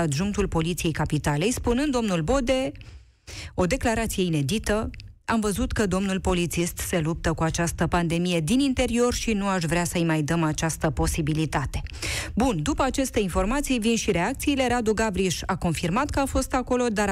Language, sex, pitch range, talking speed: Romanian, female, 170-260 Hz, 160 wpm